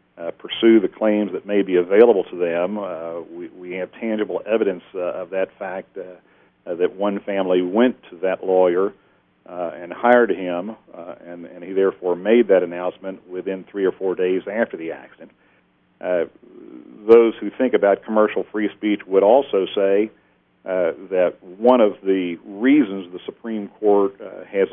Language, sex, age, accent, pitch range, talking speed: English, male, 50-69, American, 90-110 Hz, 170 wpm